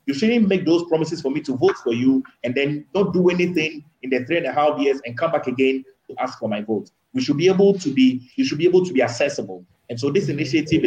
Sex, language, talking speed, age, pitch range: male, English, 270 wpm, 30-49, 125-165 Hz